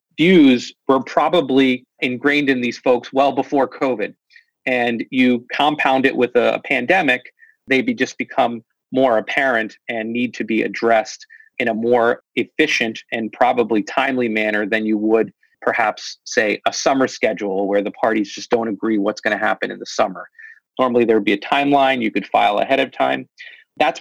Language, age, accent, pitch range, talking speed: English, 30-49, American, 115-140 Hz, 175 wpm